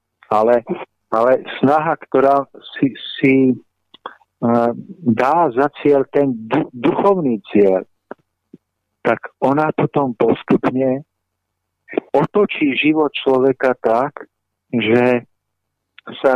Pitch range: 115-140 Hz